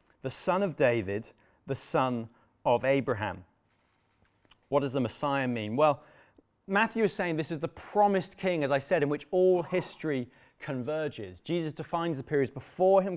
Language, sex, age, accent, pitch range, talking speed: English, male, 30-49, British, 120-165 Hz, 165 wpm